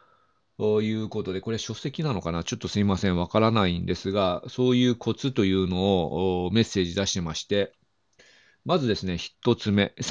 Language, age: Japanese, 40-59